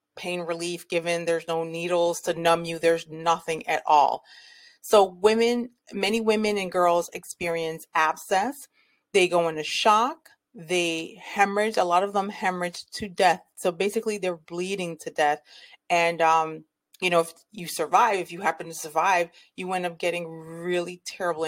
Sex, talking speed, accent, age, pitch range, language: female, 160 wpm, American, 30-49, 165-210 Hz, English